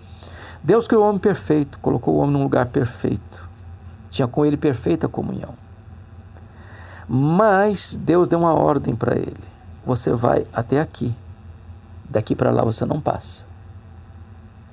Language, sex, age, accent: Portuguese, male, 50-69, Brazilian